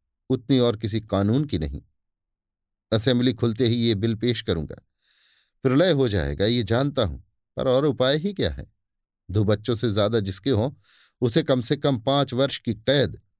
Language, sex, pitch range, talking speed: Hindi, male, 100-135 Hz, 175 wpm